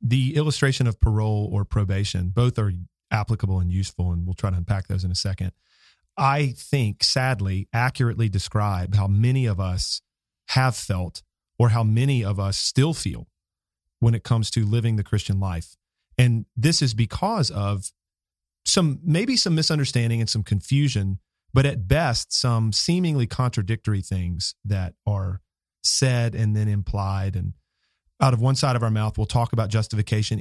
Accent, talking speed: American, 165 wpm